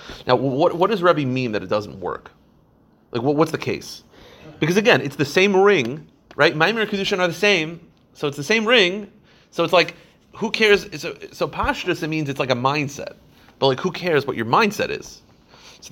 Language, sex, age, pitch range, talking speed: English, male, 30-49, 120-165 Hz, 220 wpm